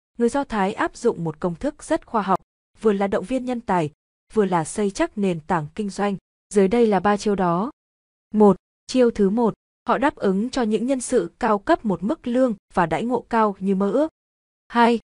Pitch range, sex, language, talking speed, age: 190-240 Hz, female, Vietnamese, 220 wpm, 20-39